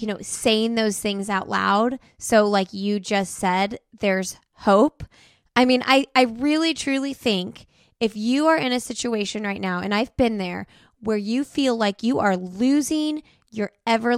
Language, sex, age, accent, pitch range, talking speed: English, female, 20-39, American, 200-255 Hz, 180 wpm